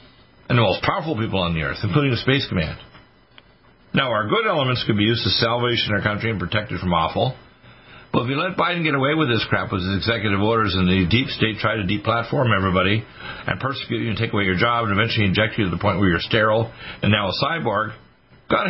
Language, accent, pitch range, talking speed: English, American, 100-140 Hz, 240 wpm